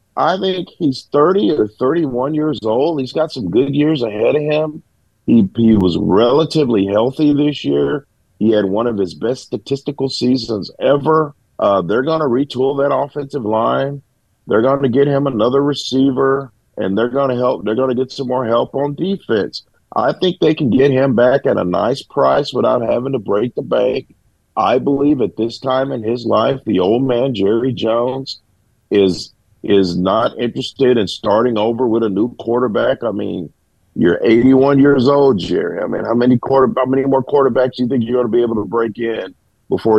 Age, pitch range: 50-69, 110-140 Hz